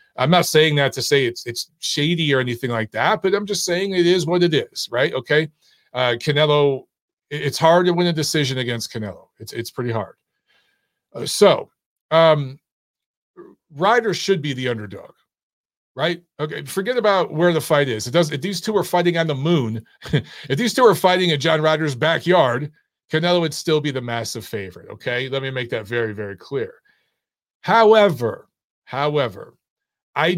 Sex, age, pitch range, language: male, 40-59, 130-175 Hz, English